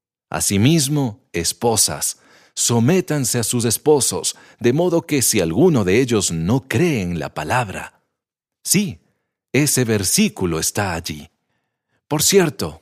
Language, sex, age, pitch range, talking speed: English, male, 50-69, 105-160 Hz, 115 wpm